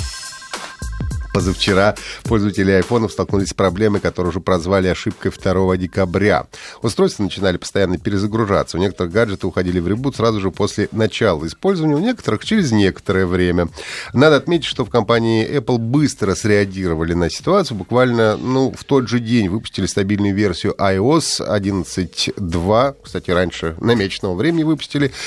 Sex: male